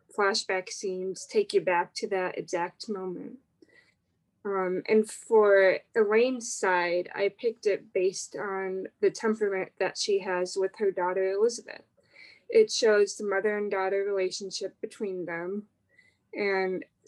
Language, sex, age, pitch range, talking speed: English, female, 20-39, 190-220 Hz, 135 wpm